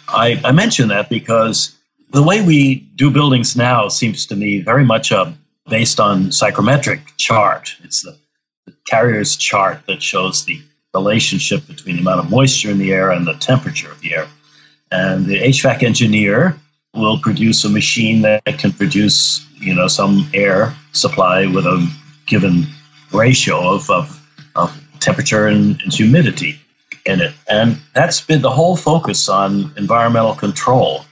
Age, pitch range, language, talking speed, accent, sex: 60-79, 110-150 Hz, English, 160 wpm, American, male